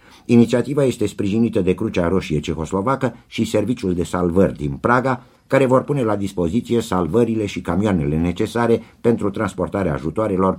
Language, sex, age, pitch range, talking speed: Romanian, male, 50-69, 90-120 Hz, 140 wpm